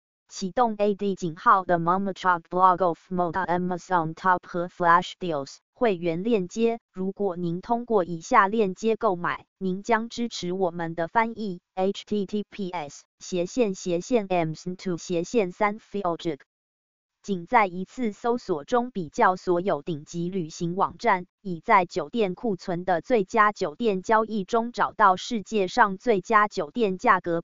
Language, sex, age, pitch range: English, female, 20-39, 175-210 Hz